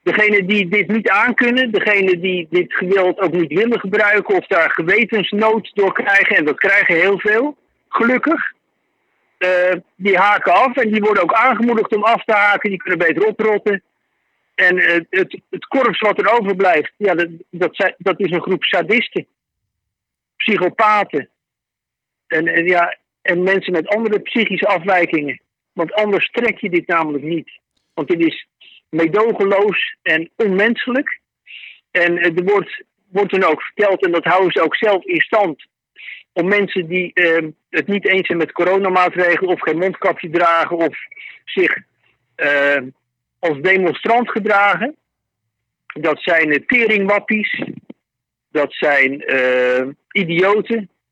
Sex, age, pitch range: male, 60-79, 175-215 Hz